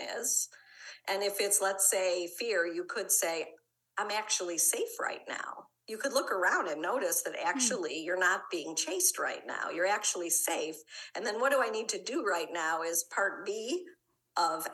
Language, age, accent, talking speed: English, 50-69, American, 185 wpm